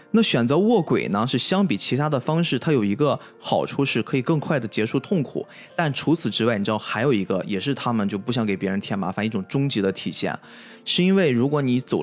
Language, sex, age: Chinese, male, 20-39